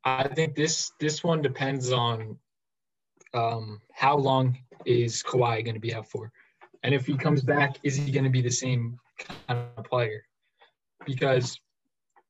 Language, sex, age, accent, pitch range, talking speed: English, male, 20-39, American, 120-140 Hz, 160 wpm